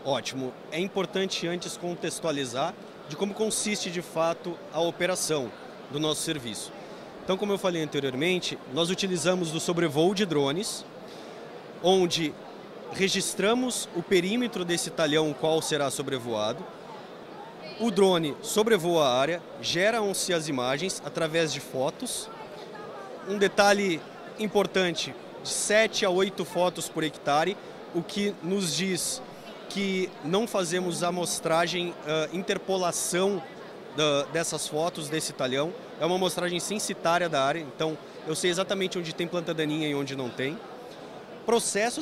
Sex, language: male, Portuguese